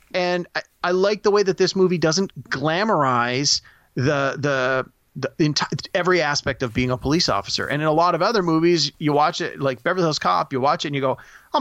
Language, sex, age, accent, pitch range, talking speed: English, male, 30-49, American, 120-170 Hz, 235 wpm